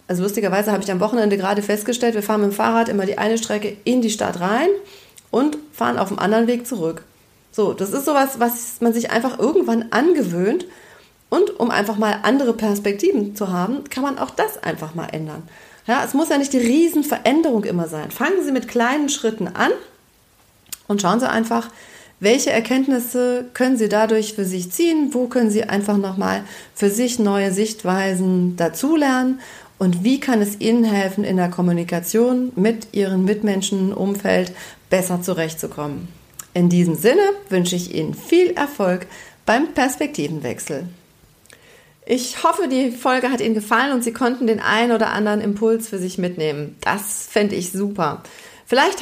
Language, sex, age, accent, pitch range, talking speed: German, female, 40-59, German, 190-255 Hz, 170 wpm